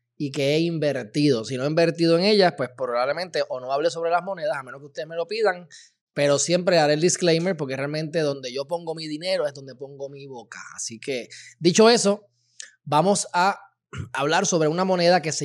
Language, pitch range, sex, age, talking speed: Spanish, 135-175 Hz, male, 20-39, 210 wpm